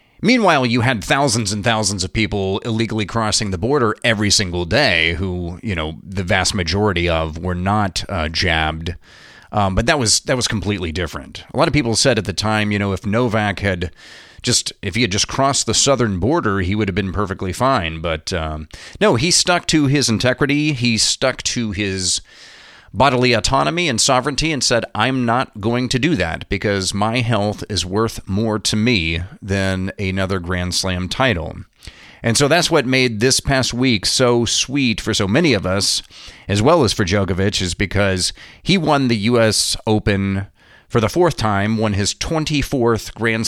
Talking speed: 185 wpm